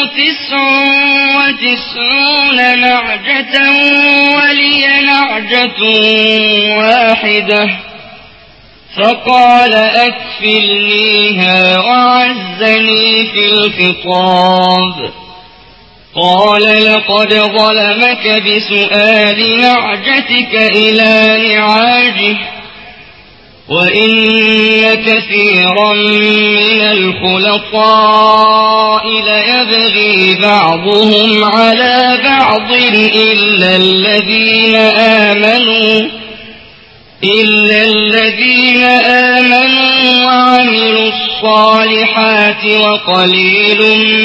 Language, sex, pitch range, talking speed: Arabic, male, 210-250 Hz, 45 wpm